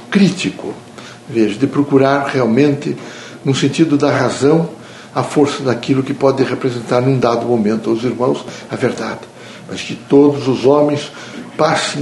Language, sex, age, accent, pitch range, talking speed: Portuguese, male, 60-79, Brazilian, 130-170 Hz, 140 wpm